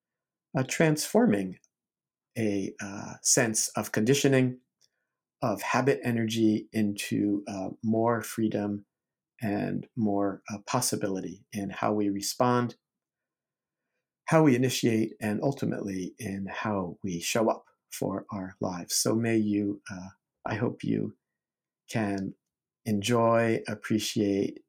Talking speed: 110 wpm